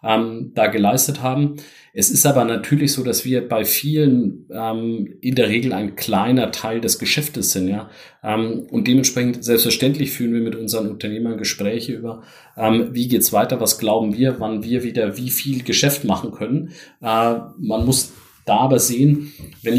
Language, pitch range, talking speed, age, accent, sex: German, 110-130 Hz, 170 wpm, 40-59, German, male